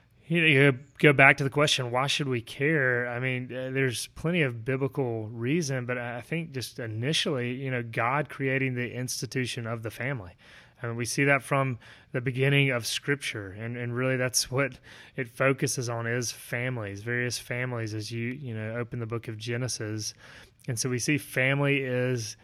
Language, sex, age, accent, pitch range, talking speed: English, male, 30-49, American, 120-135 Hz, 190 wpm